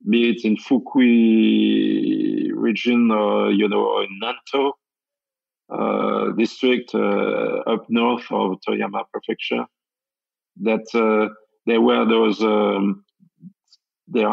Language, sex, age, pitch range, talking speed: English, male, 40-59, 105-140 Hz, 110 wpm